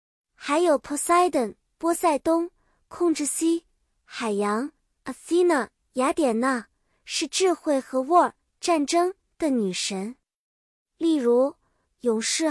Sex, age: male, 20-39